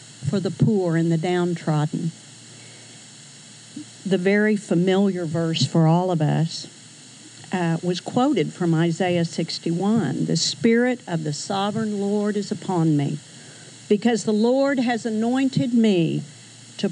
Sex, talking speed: female, 130 wpm